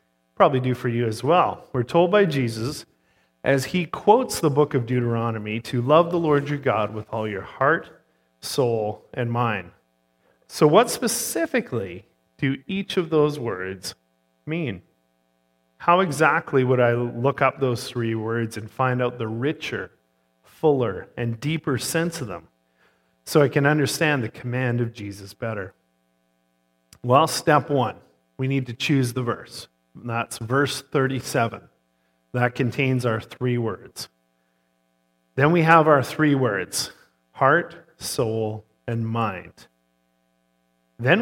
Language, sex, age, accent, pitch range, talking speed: English, male, 40-59, American, 85-140 Hz, 140 wpm